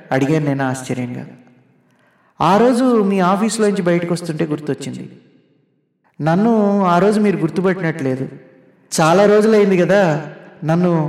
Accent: native